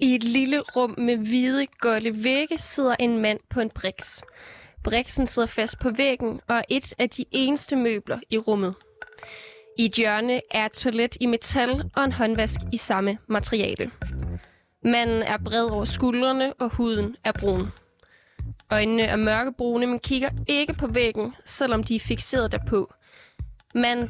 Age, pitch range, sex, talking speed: 20-39, 215-250 Hz, female, 160 wpm